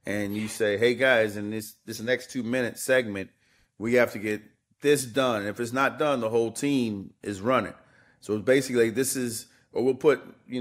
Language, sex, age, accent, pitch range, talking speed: English, male, 40-59, American, 110-130 Hz, 205 wpm